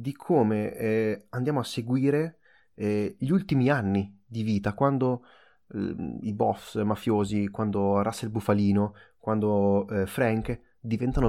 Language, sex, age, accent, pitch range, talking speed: Italian, male, 20-39, native, 105-140 Hz, 130 wpm